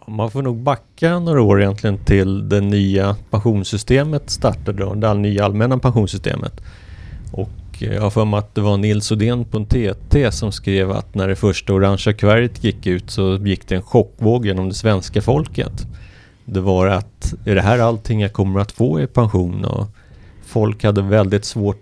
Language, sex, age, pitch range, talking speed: Swedish, male, 30-49, 95-115 Hz, 180 wpm